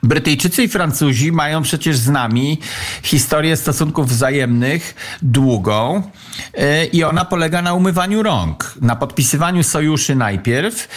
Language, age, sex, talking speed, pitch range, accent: Polish, 50-69, male, 115 wpm, 130-185 Hz, native